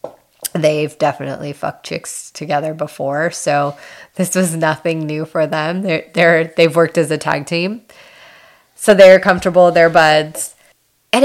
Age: 30-49